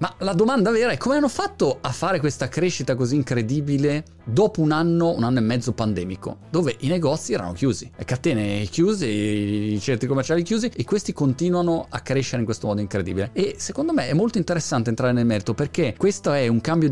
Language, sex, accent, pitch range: Italian, male, native, 110-160 Hz